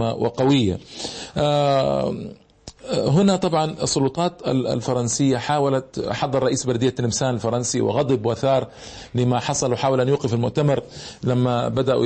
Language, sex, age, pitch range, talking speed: Arabic, male, 40-59, 120-140 Hz, 105 wpm